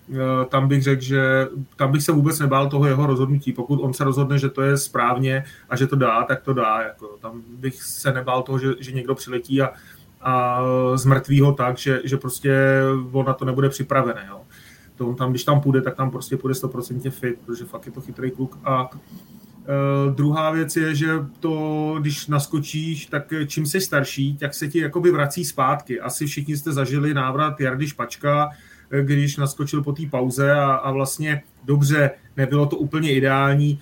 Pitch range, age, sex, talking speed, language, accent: 130-150 Hz, 30-49, male, 190 wpm, Czech, native